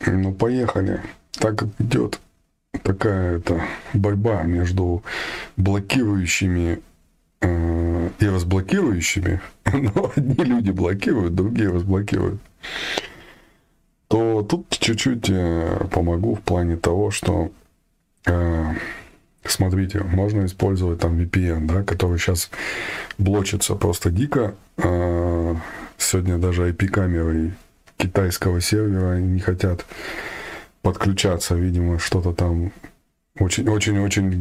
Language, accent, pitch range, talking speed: Russian, native, 85-100 Hz, 90 wpm